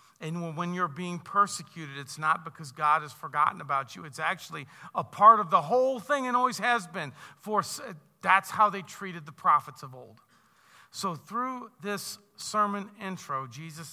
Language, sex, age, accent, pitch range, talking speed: English, male, 50-69, American, 140-190 Hz, 170 wpm